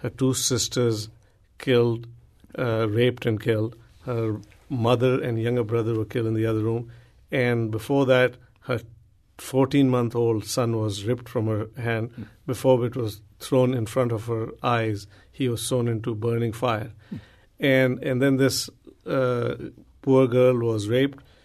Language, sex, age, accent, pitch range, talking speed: English, male, 50-69, Indian, 115-130 Hz, 155 wpm